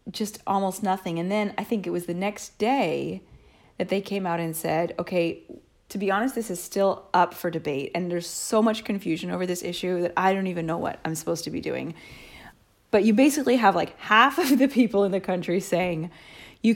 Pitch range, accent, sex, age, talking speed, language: 170-210 Hz, American, female, 30-49, 220 wpm, English